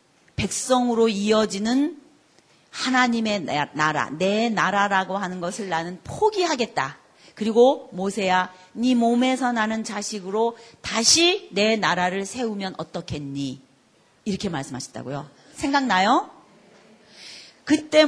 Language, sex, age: Korean, female, 40-59